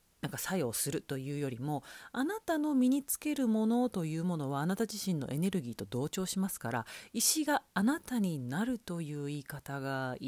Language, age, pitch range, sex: Japanese, 40-59, 145-240 Hz, female